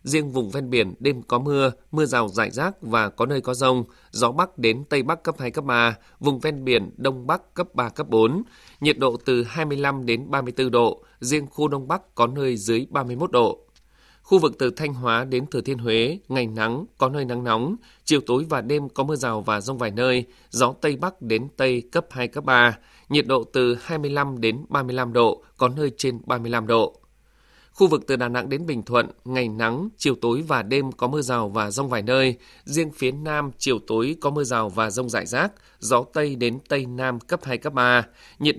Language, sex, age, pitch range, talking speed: Vietnamese, male, 20-39, 120-145 Hz, 220 wpm